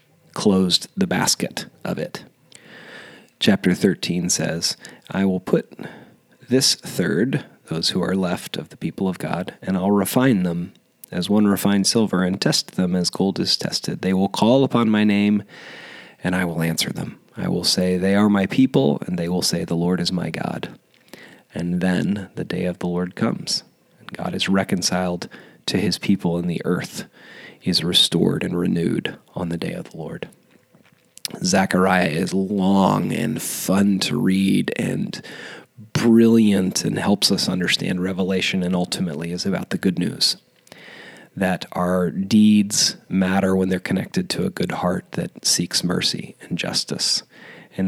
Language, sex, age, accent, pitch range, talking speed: English, male, 30-49, American, 90-105 Hz, 165 wpm